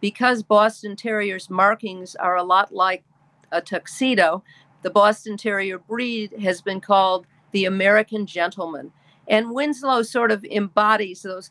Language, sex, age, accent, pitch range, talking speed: English, female, 50-69, American, 170-215 Hz, 135 wpm